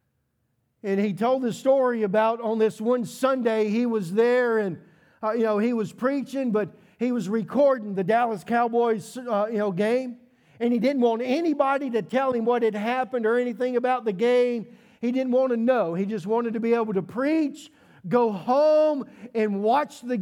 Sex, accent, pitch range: male, American, 220-265 Hz